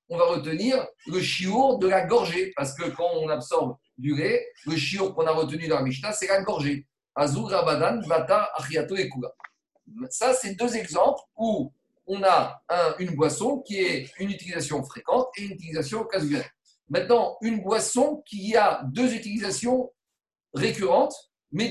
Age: 50-69